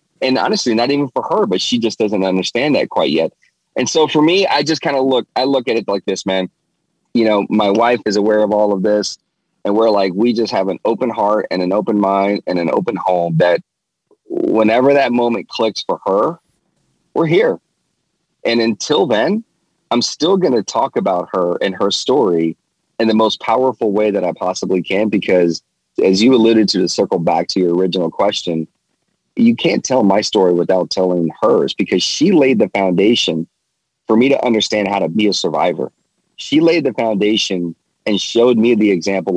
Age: 30-49